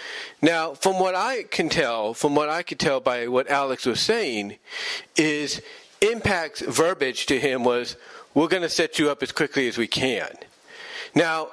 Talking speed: 170 wpm